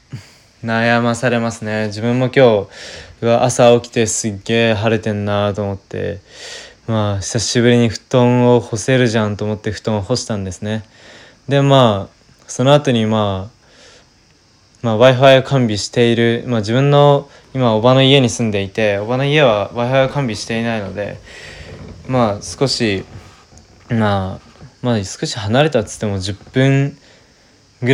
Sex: male